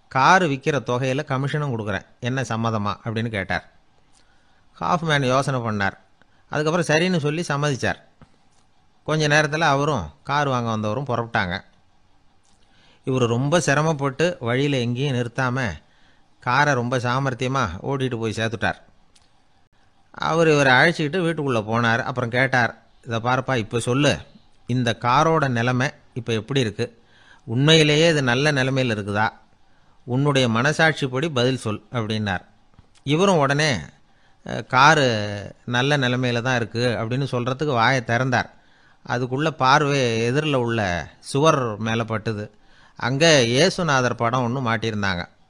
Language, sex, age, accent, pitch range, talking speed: Tamil, male, 30-49, native, 110-140 Hz, 110 wpm